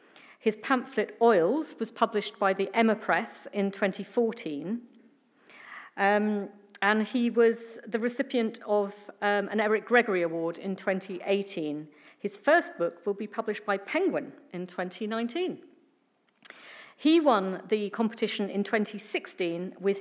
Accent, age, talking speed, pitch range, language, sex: British, 50-69, 125 wpm, 190-230 Hz, English, female